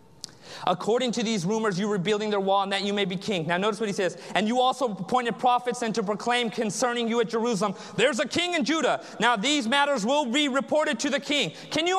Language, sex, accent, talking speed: English, male, American, 240 wpm